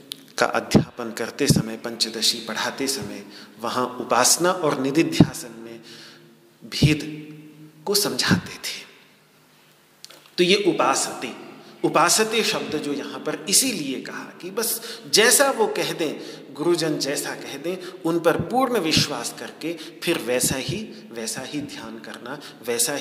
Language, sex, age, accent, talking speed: Hindi, male, 40-59, native, 130 wpm